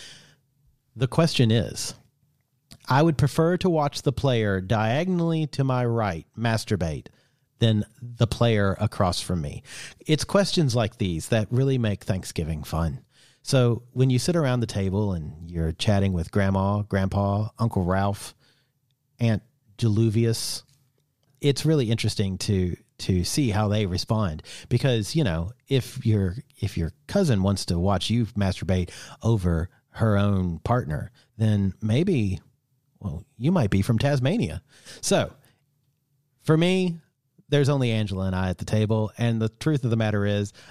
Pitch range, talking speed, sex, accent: 100-135 Hz, 145 wpm, male, American